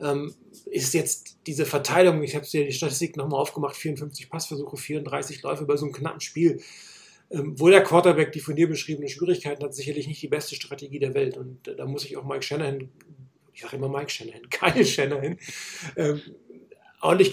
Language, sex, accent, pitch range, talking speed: German, male, German, 140-175 Hz, 185 wpm